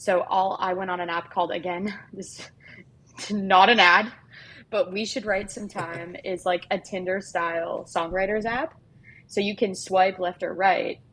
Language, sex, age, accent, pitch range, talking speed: English, female, 20-39, American, 170-190 Hz, 180 wpm